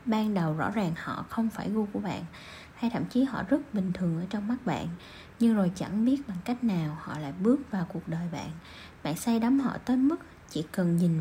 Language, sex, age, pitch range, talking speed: Vietnamese, female, 20-39, 185-245 Hz, 235 wpm